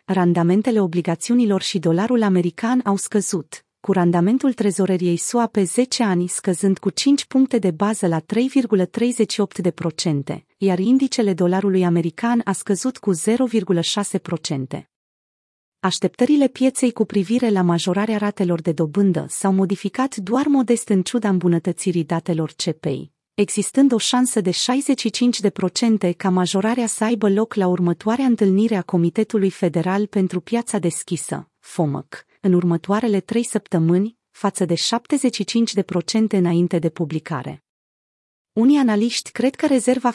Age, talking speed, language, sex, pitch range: 30-49, 125 wpm, Romanian, female, 175-225 Hz